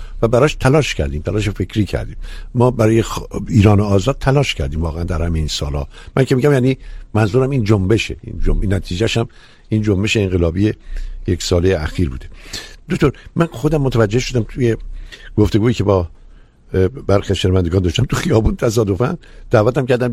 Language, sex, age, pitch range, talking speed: Persian, male, 60-79, 100-135 Hz, 160 wpm